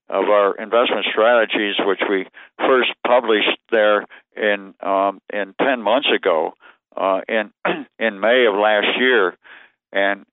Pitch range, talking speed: 95-105 Hz, 135 wpm